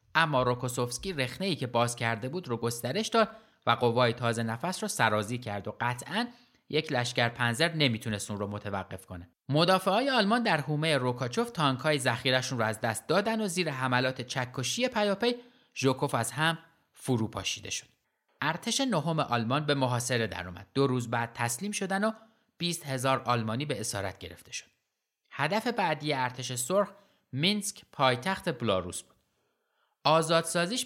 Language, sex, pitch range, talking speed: Persian, male, 115-165 Hz, 150 wpm